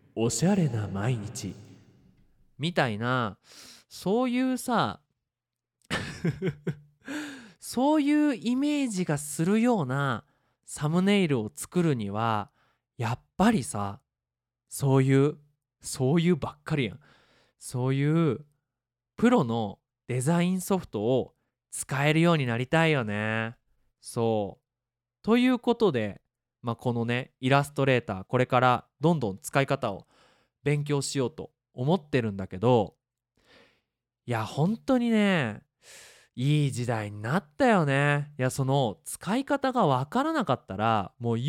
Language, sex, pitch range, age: Japanese, male, 120-175 Hz, 20-39